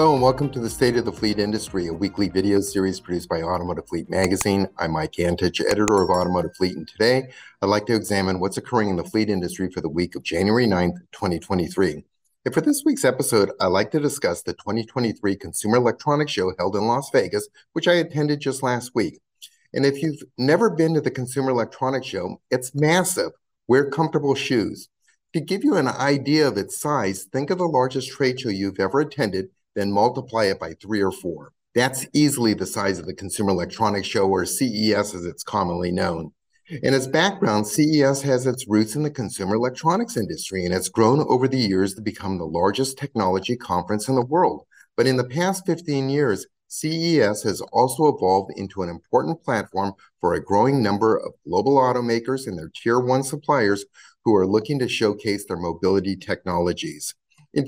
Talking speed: 190 wpm